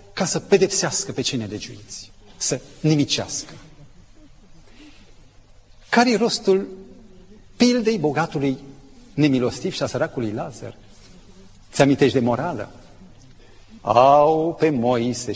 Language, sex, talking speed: Romanian, male, 90 wpm